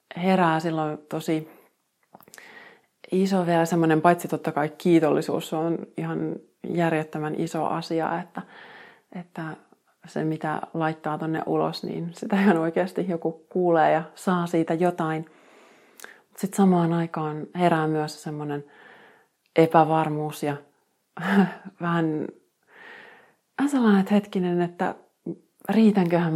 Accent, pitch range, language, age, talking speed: native, 155-175 Hz, Finnish, 30-49, 105 wpm